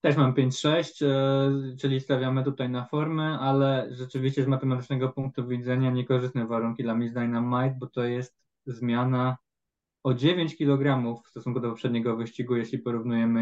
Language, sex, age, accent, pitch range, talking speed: Polish, male, 20-39, native, 115-135 Hz, 150 wpm